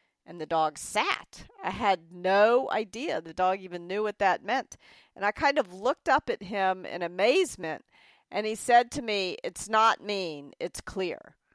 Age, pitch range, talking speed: 50-69, 175-220 Hz, 180 wpm